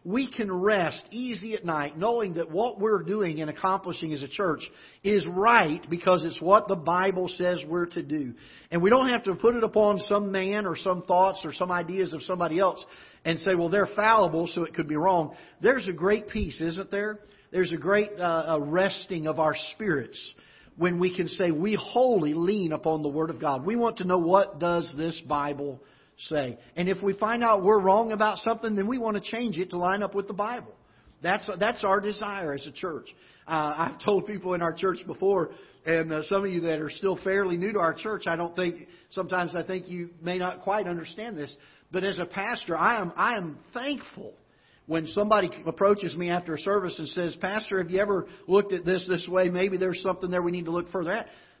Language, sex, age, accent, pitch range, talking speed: English, male, 50-69, American, 165-205 Hz, 220 wpm